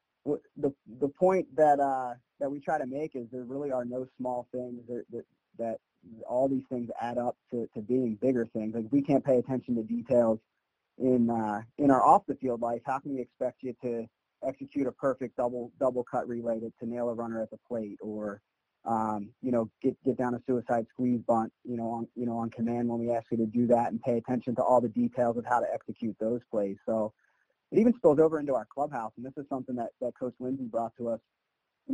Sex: male